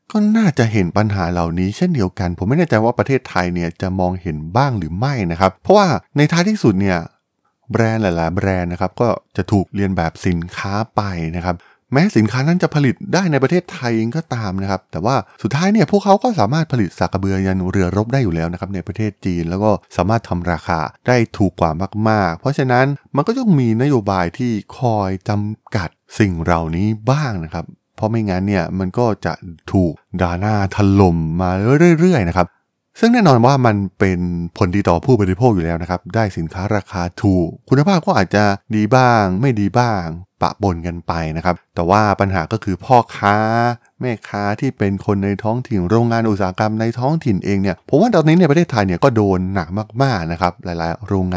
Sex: male